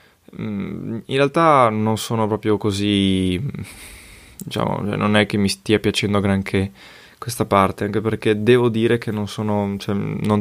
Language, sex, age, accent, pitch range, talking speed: Italian, male, 20-39, native, 95-110 Hz, 150 wpm